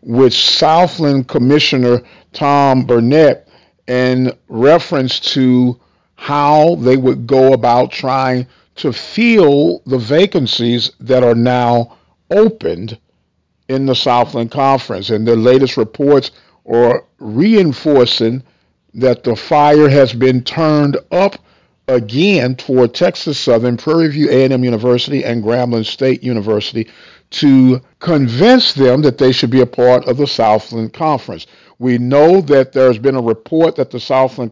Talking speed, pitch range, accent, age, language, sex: 130 wpm, 120-145 Hz, American, 50-69, English, male